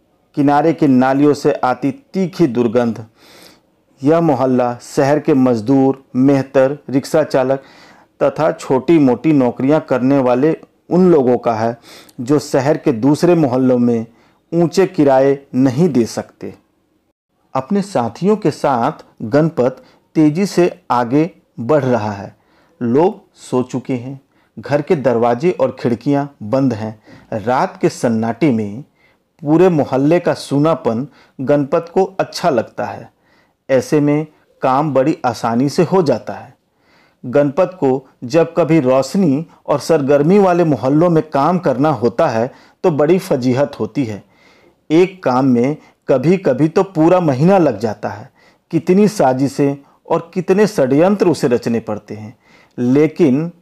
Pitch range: 125-165 Hz